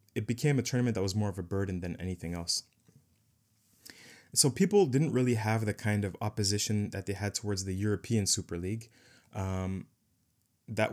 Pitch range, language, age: 95-115 Hz, English, 20-39